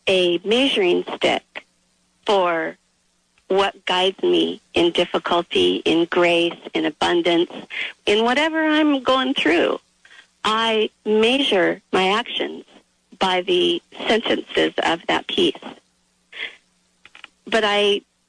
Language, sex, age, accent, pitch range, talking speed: English, female, 40-59, American, 190-260 Hz, 100 wpm